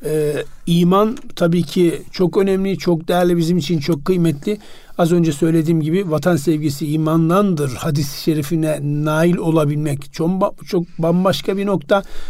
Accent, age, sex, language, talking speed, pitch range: native, 50-69, male, Turkish, 135 wpm, 165-190 Hz